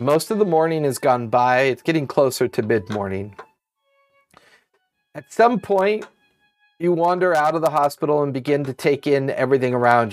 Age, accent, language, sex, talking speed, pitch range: 40-59, American, English, male, 165 wpm, 120-190 Hz